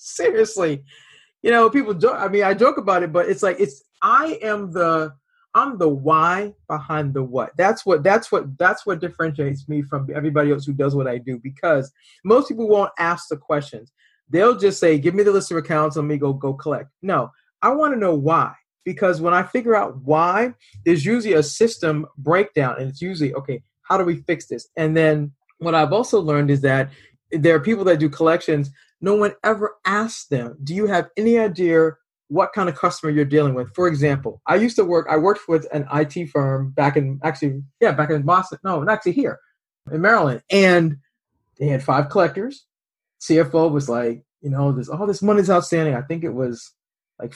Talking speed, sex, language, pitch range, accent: 205 wpm, male, English, 145-195 Hz, American